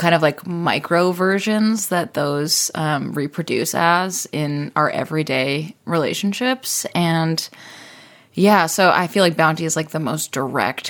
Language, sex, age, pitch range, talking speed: English, female, 20-39, 150-180 Hz, 145 wpm